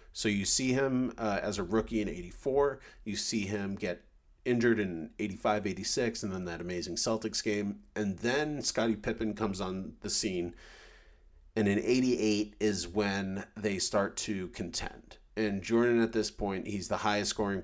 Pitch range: 95-115 Hz